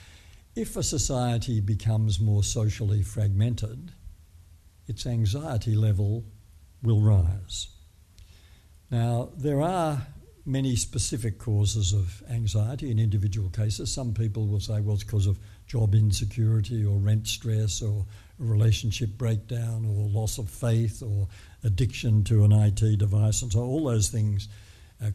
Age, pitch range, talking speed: 60-79, 100-115 Hz, 130 wpm